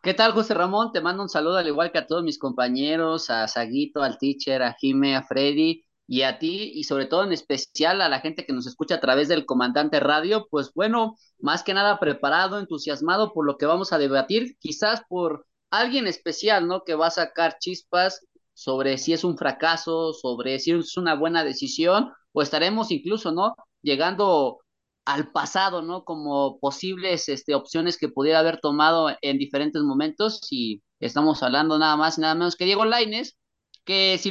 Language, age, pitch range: Spanish, 30-49, 140-185 Hz